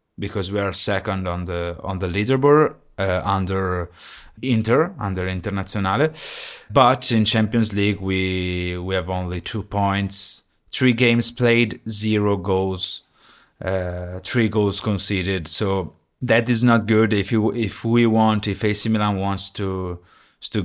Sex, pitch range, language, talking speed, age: male, 95-115 Hz, English, 140 wpm, 30-49